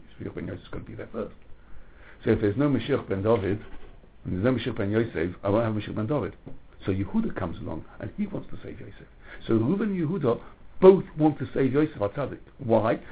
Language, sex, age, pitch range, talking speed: English, male, 60-79, 110-145 Hz, 225 wpm